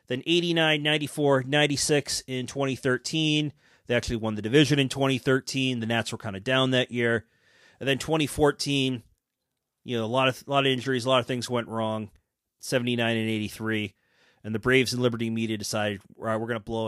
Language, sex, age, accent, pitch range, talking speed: English, male, 30-49, American, 115-155 Hz, 195 wpm